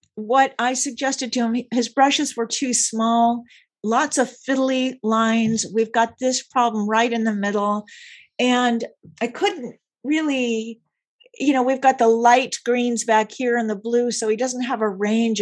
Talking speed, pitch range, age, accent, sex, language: 170 wpm, 195-250 Hz, 50-69, American, female, English